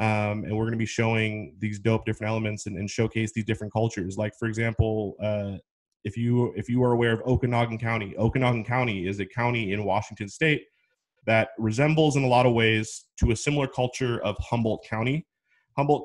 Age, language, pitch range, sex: 20-39, English, 105-120 Hz, male